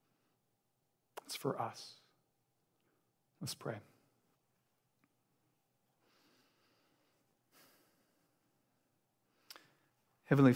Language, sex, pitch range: English, male, 120-150 Hz